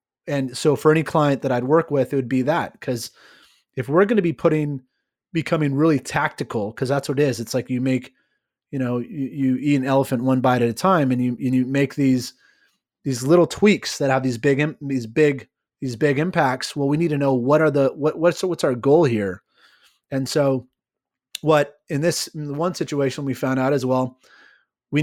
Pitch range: 130-155 Hz